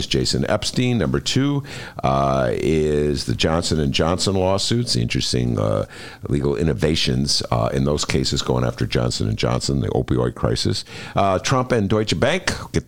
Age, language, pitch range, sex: 50-69, English, 70-100 Hz, male